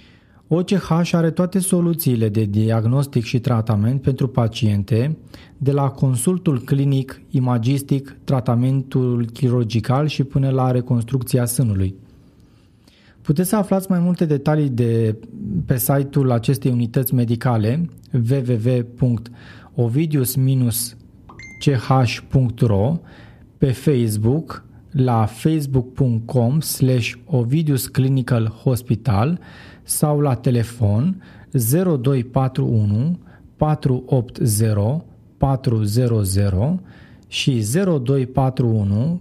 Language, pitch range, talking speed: Romanian, 115-145 Hz, 75 wpm